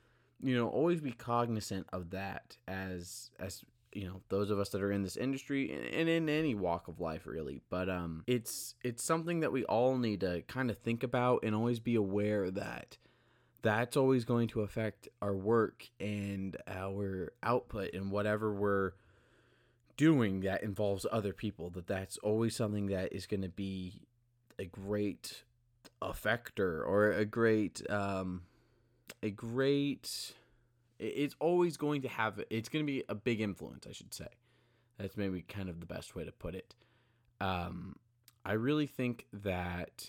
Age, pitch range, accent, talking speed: 20-39, 95-120 Hz, American, 165 wpm